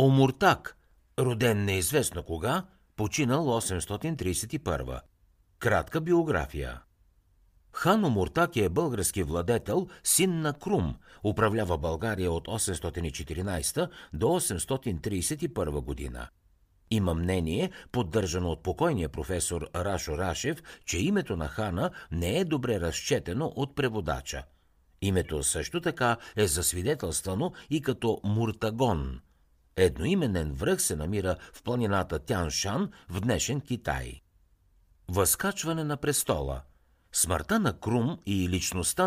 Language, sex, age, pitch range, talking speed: Bulgarian, male, 60-79, 85-120 Hz, 105 wpm